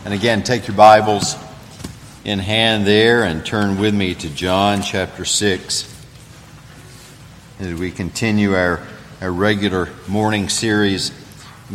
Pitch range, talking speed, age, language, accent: 95-115 Hz, 130 wpm, 50-69, English, American